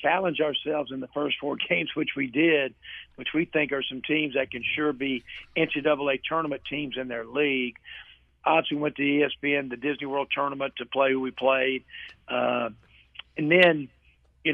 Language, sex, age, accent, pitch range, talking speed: English, male, 50-69, American, 130-155 Hz, 180 wpm